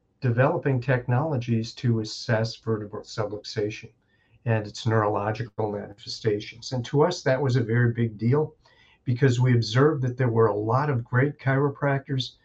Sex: male